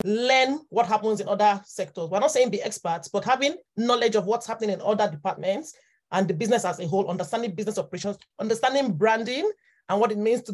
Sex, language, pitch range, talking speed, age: male, English, 200-260 Hz, 205 wpm, 30-49